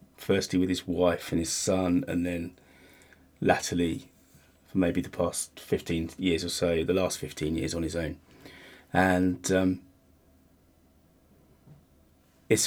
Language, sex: English, male